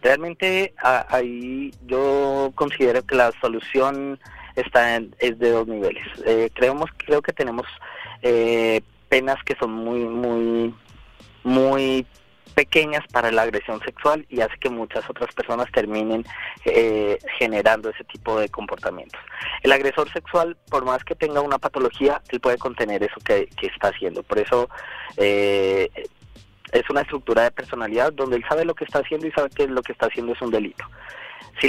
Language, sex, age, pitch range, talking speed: Spanish, male, 30-49, 115-145 Hz, 165 wpm